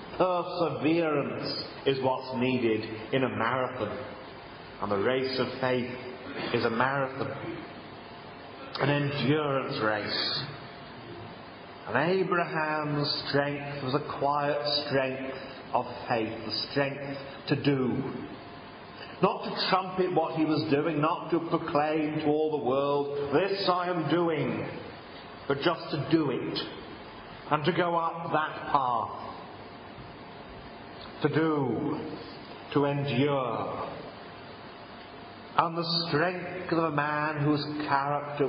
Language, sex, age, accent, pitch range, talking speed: English, male, 40-59, British, 130-160 Hz, 110 wpm